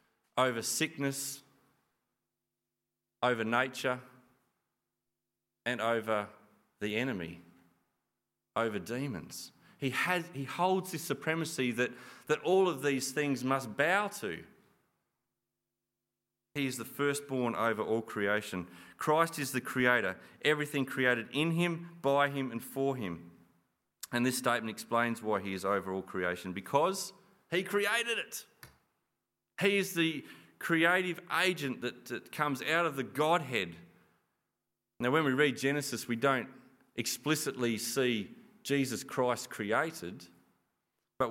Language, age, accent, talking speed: English, 30-49, Australian, 120 wpm